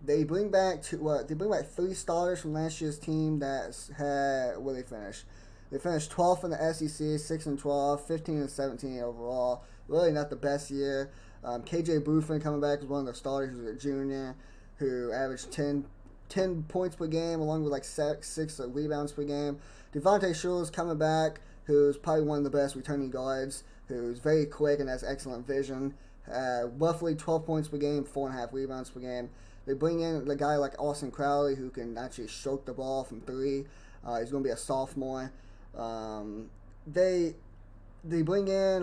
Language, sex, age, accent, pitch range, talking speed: English, male, 10-29, American, 125-155 Hz, 200 wpm